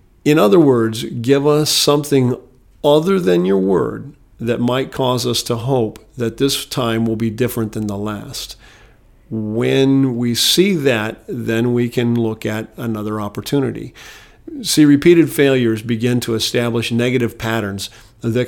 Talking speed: 145 wpm